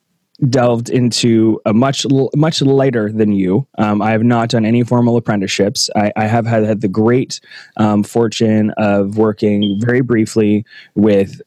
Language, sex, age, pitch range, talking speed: English, male, 20-39, 100-115 Hz, 155 wpm